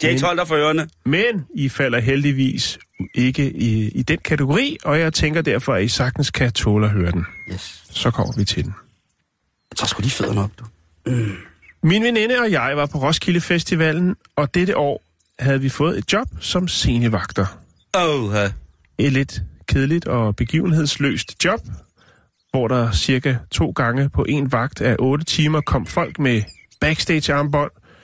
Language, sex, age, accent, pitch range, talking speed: Danish, male, 30-49, native, 110-155 Hz, 150 wpm